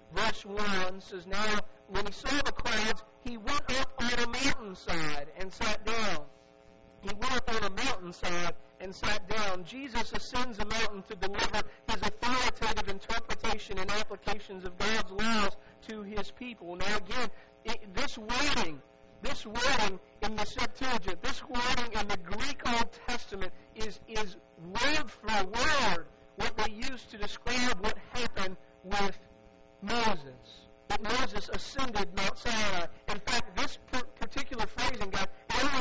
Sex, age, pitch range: male, 50-69, 185-230 Hz